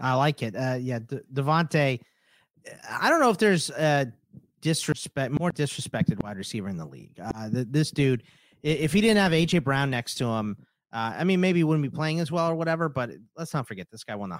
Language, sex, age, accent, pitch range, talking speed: English, male, 30-49, American, 110-155 Hz, 225 wpm